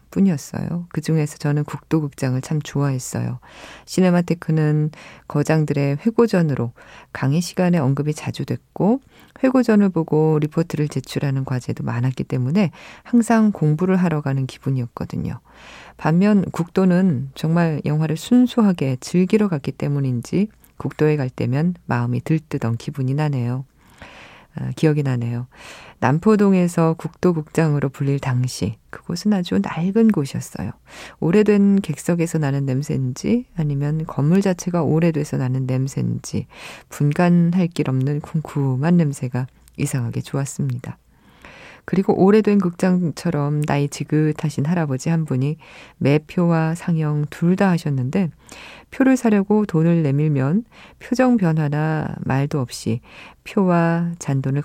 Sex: female